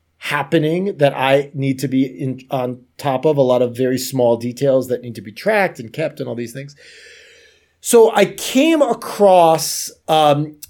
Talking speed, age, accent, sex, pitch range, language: 175 wpm, 30-49, American, male, 135-180 Hz, English